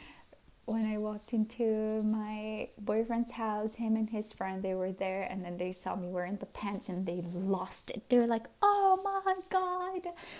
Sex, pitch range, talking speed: female, 190-240 Hz, 180 wpm